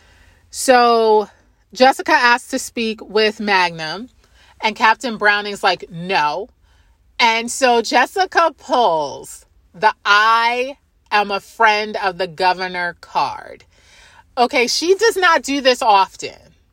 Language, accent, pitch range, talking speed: English, American, 205-265 Hz, 115 wpm